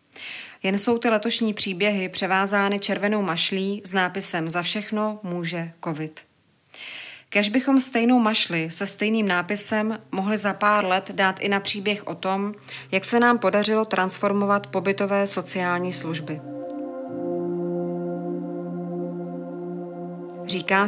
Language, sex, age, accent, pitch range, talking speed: Czech, female, 30-49, native, 175-205 Hz, 115 wpm